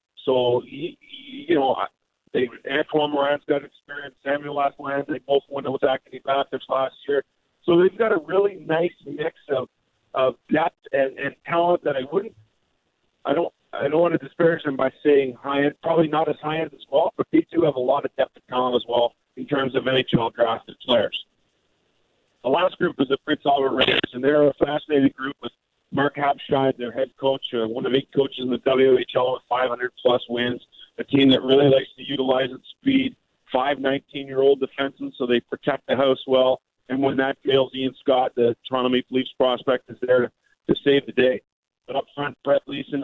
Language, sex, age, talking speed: English, male, 50-69, 200 wpm